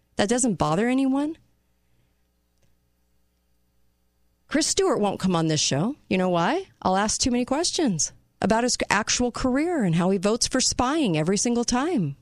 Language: English